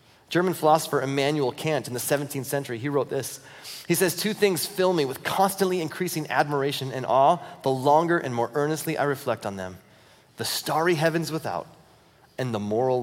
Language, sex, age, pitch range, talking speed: English, male, 30-49, 130-170 Hz, 180 wpm